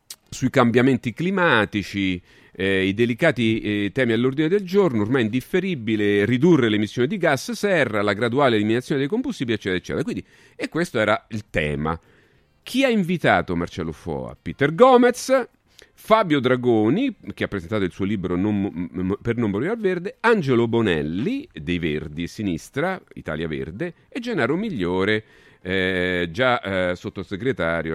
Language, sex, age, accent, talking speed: Italian, male, 40-59, native, 150 wpm